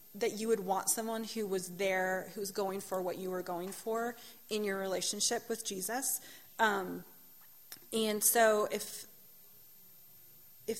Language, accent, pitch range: English, American, 195-235 Hz